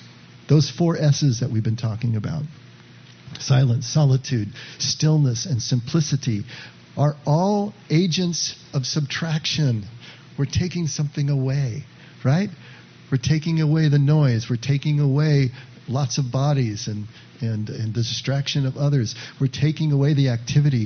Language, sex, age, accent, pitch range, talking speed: English, male, 50-69, American, 120-150 Hz, 130 wpm